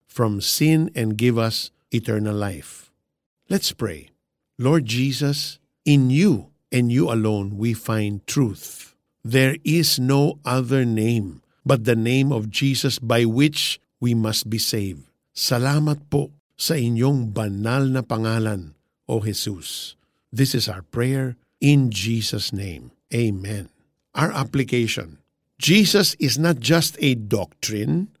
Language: Filipino